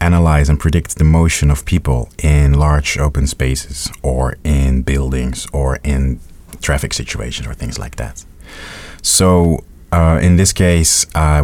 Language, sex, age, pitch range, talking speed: Swedish, male, 30-49, 70-85 Hz, 145 wpm